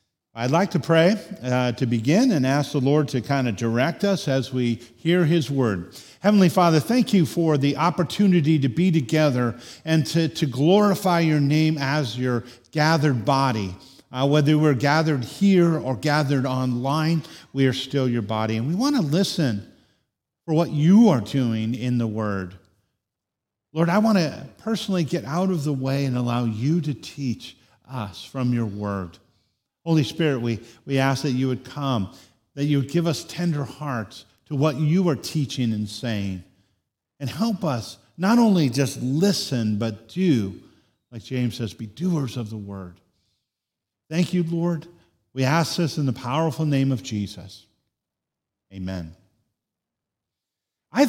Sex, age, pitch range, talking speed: male, 50-69, 115-165 Hz, 165 wpm